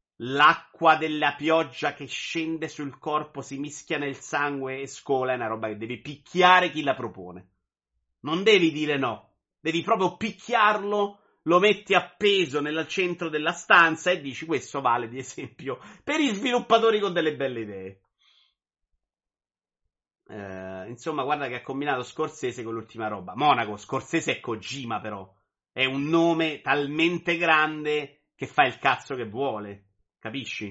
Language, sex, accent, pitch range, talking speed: Italian, male, native, 115-160 Hz, 150 wpm